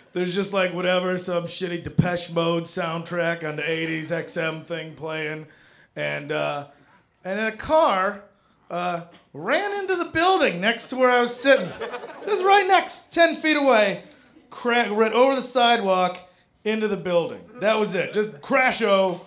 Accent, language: American, English